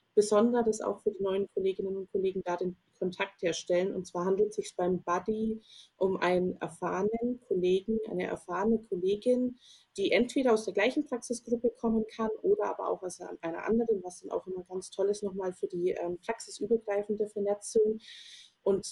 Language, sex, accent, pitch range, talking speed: German, female, German, 185-210 Hz, 170 wpm